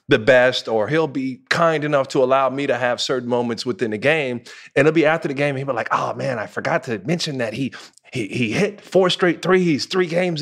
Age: 30-49